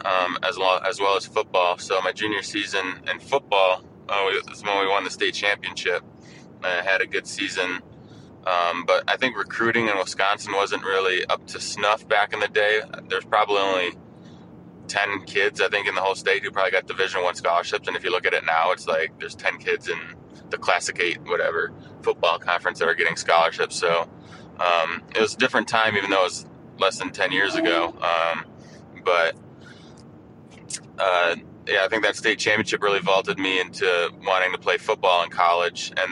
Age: 20-39